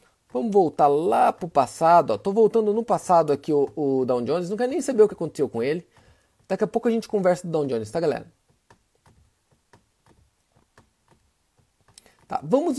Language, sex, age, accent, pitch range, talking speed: Portuguese, male, 30-49, Brazilian, 170-235 Hz, 175 wpm